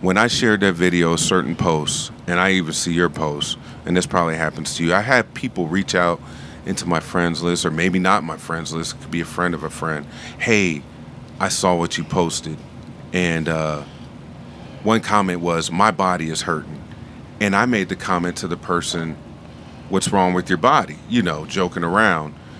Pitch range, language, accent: 85-100 Hz, English, American